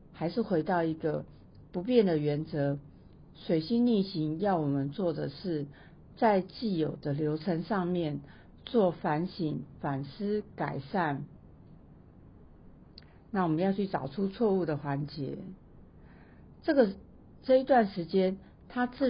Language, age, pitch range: Chinese, 50-69, 150-190 Hz